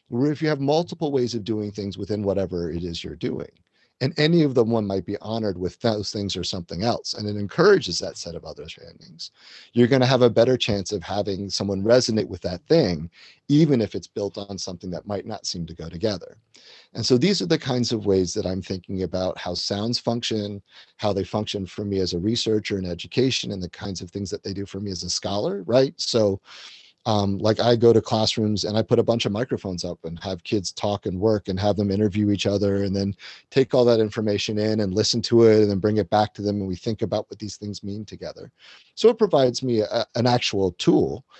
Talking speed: 235 wpm